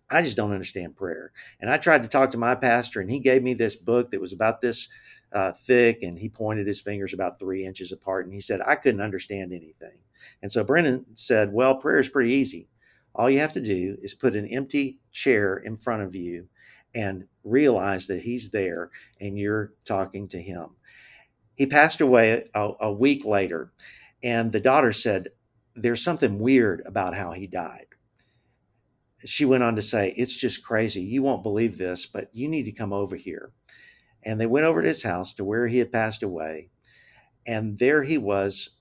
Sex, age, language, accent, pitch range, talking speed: male, 50-69, English, American, 100-125 Hz, 200 wpm